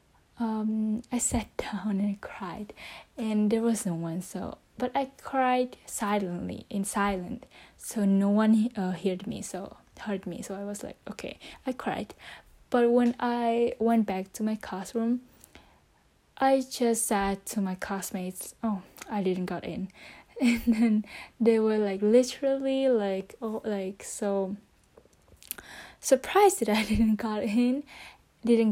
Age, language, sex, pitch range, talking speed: 10-29, Vietnamese, female, 200-240 Hz, 145 wpm